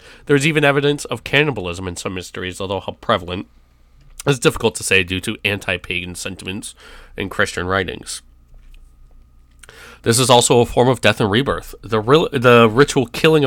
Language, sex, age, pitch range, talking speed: English, male, 20-39, 90-115 Hz, 160 wpm